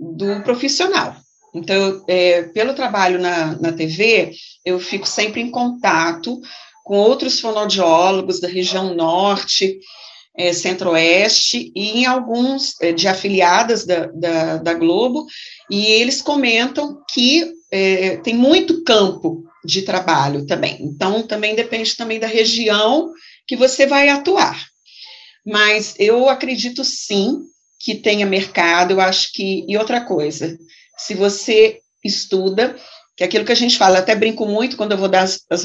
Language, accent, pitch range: Portuguese, Brazilian, 180-245 Hz